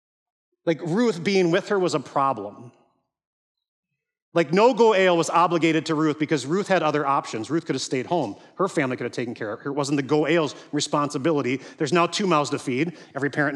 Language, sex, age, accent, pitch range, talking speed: English, male, 40-59, American, 155-200 Hz, 215 wpm